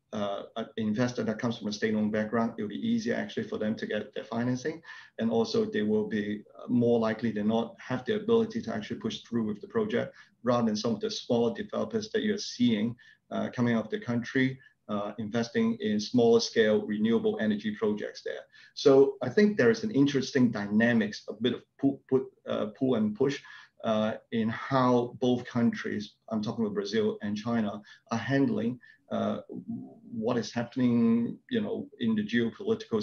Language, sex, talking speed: Portuguese, male, 185 wpm